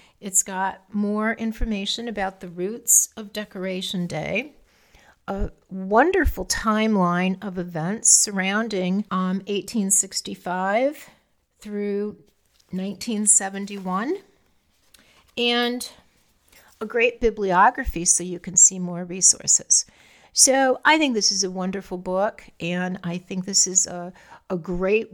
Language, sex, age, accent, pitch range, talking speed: English, female, 50-69, American, 185-235 Hz, 110 wpm